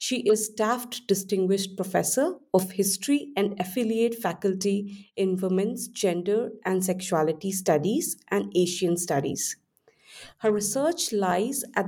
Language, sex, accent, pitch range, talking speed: English, female, Indian, 190-240 Hz, 115 wpm